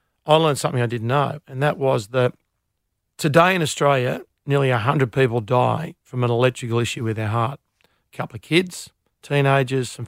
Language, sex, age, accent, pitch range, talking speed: English, male, 50-69, Australian, 125-150 Hz, 180 wpm